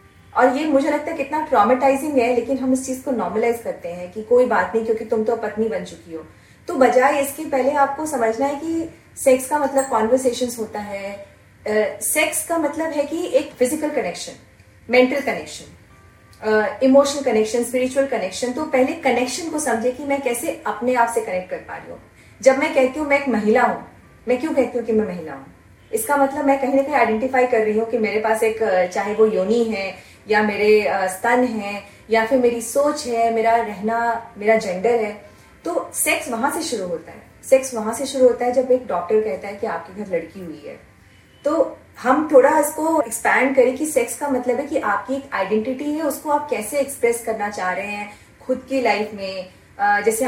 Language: Hindi